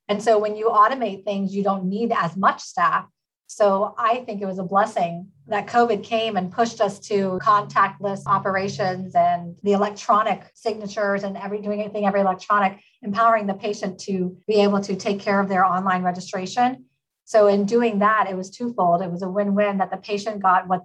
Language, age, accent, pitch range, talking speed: English, 30-49, American, 185-220 Hz, 195 wpm